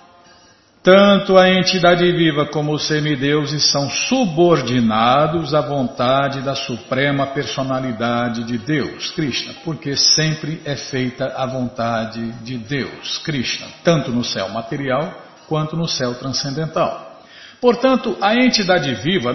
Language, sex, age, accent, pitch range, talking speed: Portuguese, male, 50-69, Brazilian, 130-170 Hz, 120 wpm